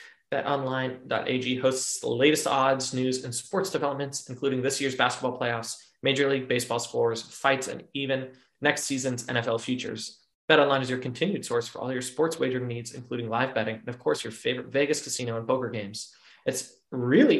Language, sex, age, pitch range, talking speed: English, male, 20-39, 120-140 Hz, 175 wpm